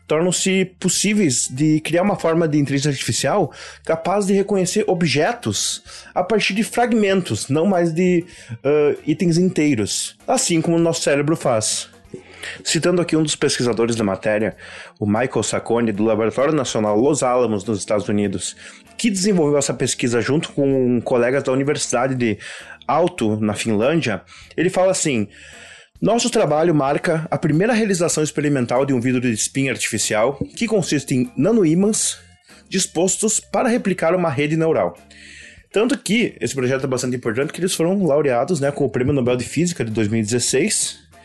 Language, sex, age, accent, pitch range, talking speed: Portuguese, male, 20-39, Brazilian, 120-185 Hz, 155 wpm